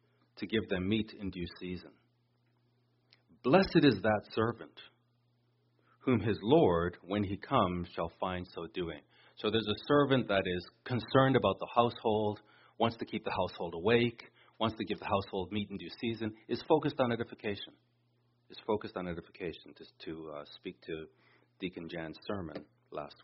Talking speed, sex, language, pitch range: 160 wpm, male, English, 95-120 Hz